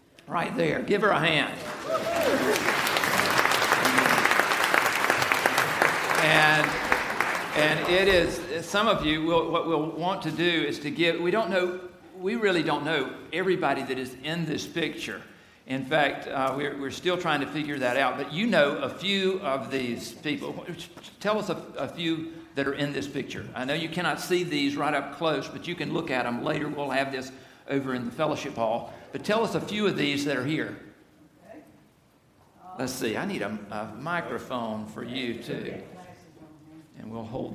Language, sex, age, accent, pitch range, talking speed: English, male, 50-69, American, 140-170 Hz, 175 wpm